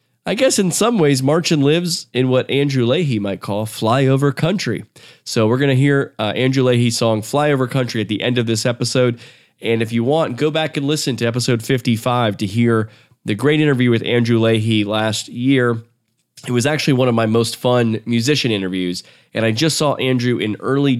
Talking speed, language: 195 wpm, English